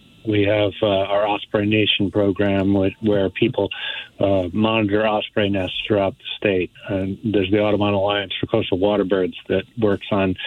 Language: English